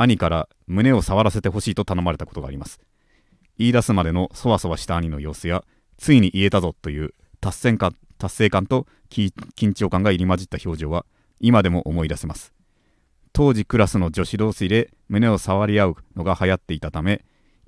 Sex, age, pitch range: male, 30-49, 90-115 Hz